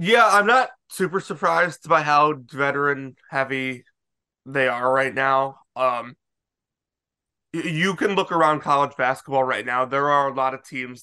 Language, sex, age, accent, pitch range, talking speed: English, male, 20-39, American, 130-150 Hz, 145 wpm